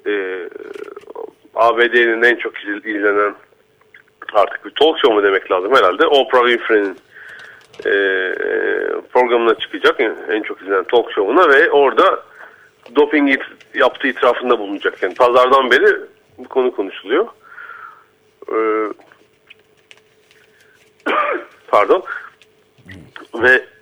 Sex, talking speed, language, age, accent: male, 100 wpm, Turkish, 40-59, native